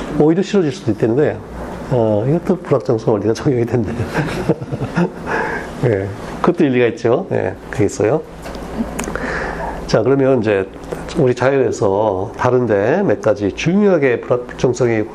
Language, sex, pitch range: Korean, male, 110-155 Hz